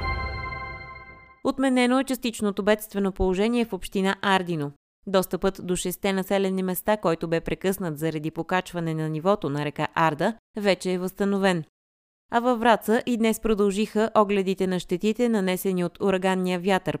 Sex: female